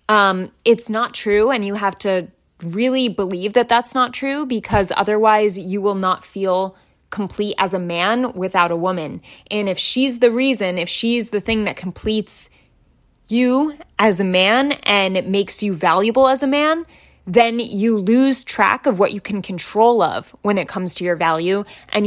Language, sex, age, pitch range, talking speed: English, female, 10-29, 185-235 Hz, 180 wpm